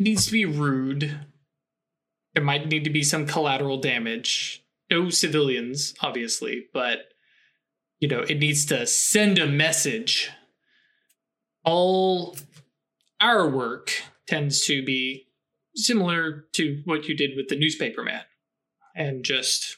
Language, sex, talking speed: English, male, 125 wpm